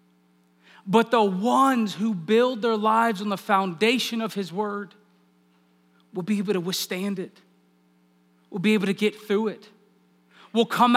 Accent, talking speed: American, 155 wpm